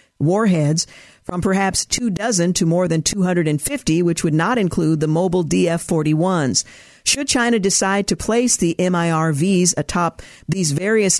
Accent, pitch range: American, 160-200 Hz